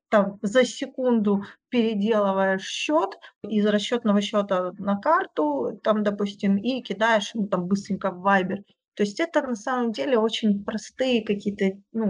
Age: 20-39